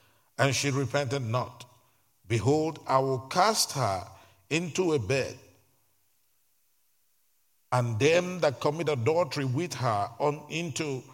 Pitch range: 120-170 Hz